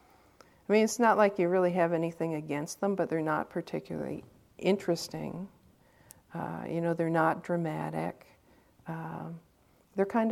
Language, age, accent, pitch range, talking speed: English, 50-69, American, 160-195 Hz, 145 wpm